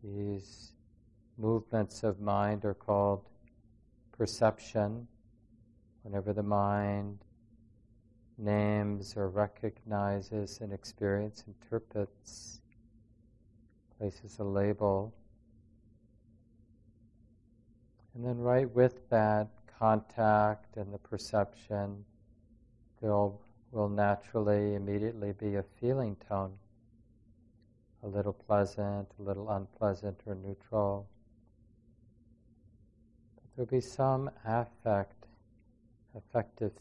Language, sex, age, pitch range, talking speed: English, male, 40-59, 105-115 Hz, 80 wpm